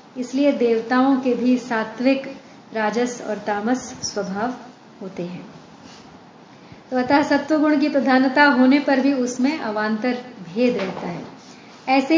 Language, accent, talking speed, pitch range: Hindi, native, 125 wpm, 225-275 Hz